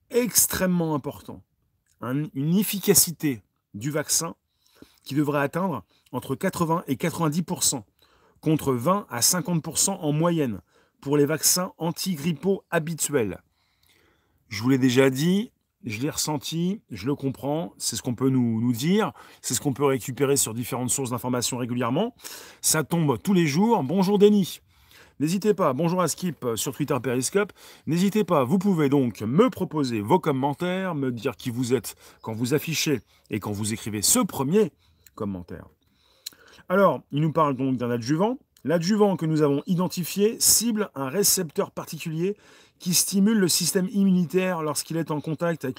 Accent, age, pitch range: French, 40-59, 130-185 Hz